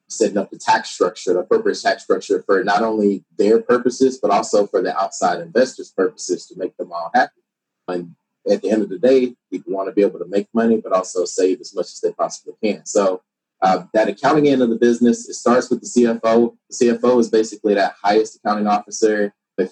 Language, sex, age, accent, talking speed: English, male, 30-49, American, 220 wpm